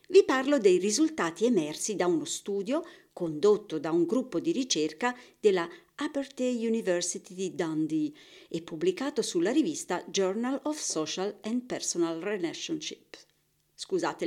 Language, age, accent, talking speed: Italian, 50-69, native, 125 wpm